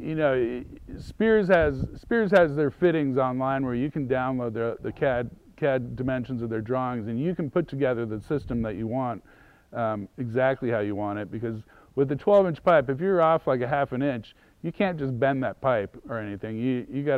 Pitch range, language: 125-165 Hz, English